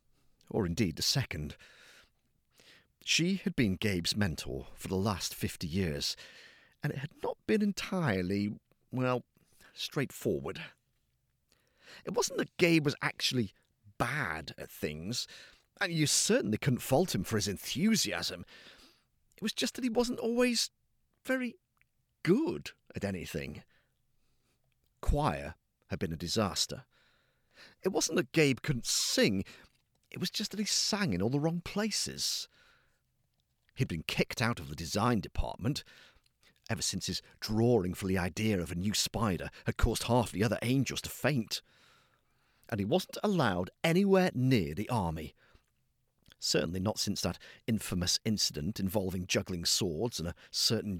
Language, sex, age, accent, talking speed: English, male, 50-69, British, 140 wpm